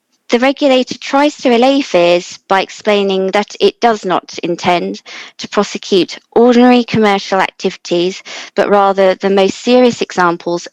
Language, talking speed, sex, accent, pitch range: English, 135 wpm, female, British, 185-235 Hz